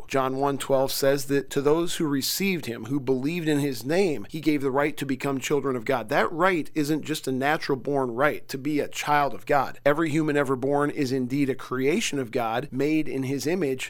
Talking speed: 225 wpm